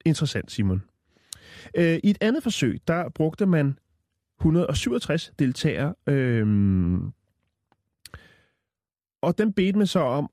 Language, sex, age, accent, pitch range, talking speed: Danish, male, 30-49, native, 100-155 Hz, 105 wpm